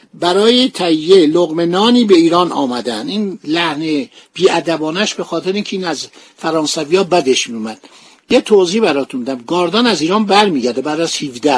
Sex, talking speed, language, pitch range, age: male, 140 wpm, Persian, 155-205 Hz, 60-79